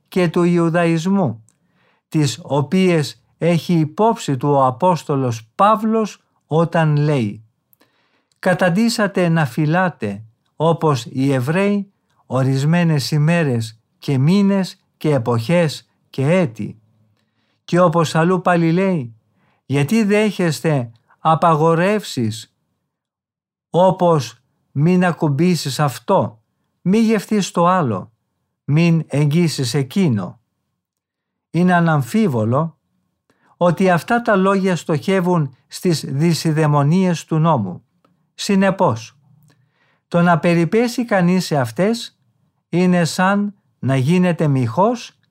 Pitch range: 140-185 Hz